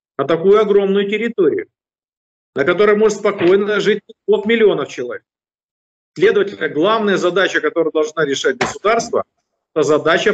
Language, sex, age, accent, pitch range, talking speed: Russian, male, 40-59, native, 165-235 Hz, 120 wpm